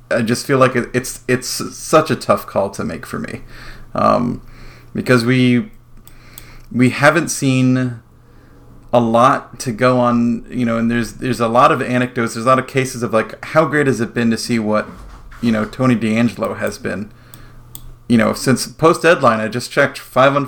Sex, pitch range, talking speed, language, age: male, 115-130 Hz, 190 wpm, English, 30-49